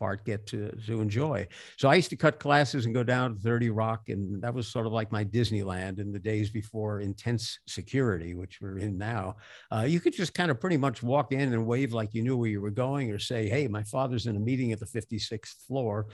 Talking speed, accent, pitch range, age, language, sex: 245 wpm, American, 110-140 Hz, 50-69, English, male